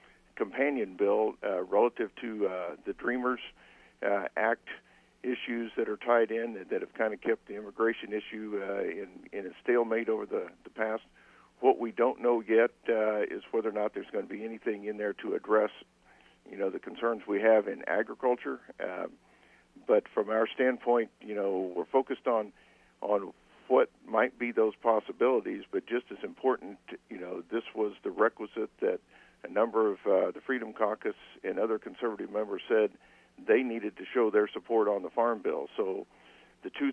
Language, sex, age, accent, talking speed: English, male, 50-69, American, 185 wpm